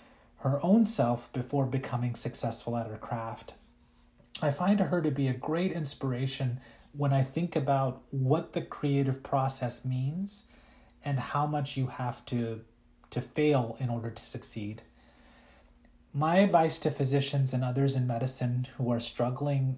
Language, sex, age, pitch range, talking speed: English, male, 30-49, 120-145 Hz, 150 wpm